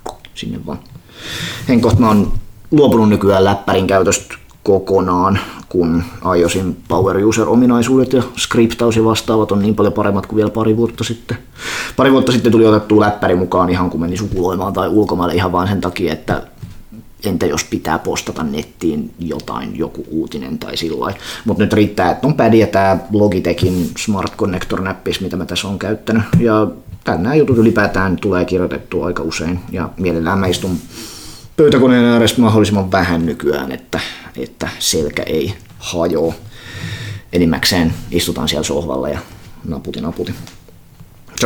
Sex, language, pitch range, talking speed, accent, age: male, Finnish, 90-115 Hz, 145 wpm, native, 30-49